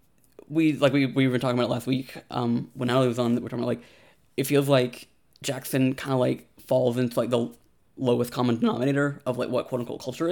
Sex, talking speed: male, 225 wpm